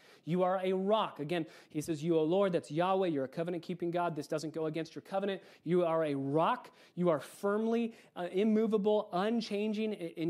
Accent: American